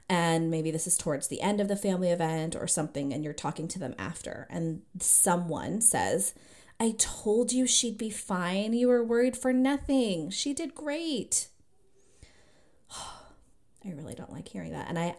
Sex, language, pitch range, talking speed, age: female, English, 170-220 Hz, 175 wpm, 30-49